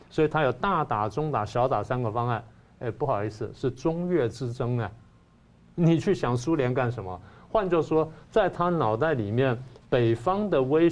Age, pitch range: 50-69, 120-165 Hz